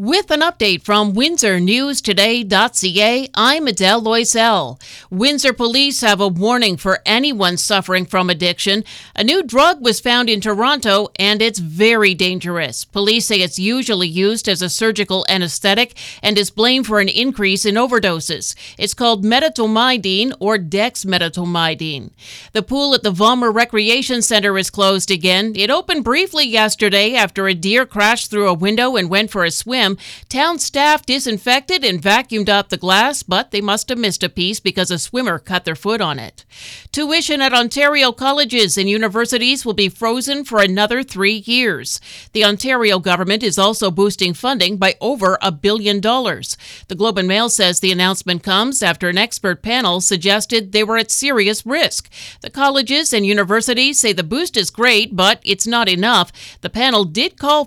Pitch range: 190-245 Hz